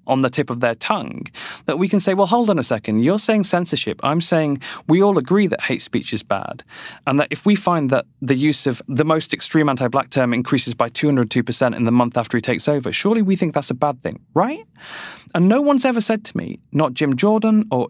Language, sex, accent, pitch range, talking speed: English, male, British, 130-190 Hz, 240 wpm